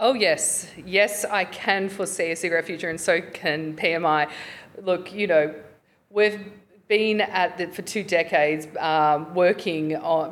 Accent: Australian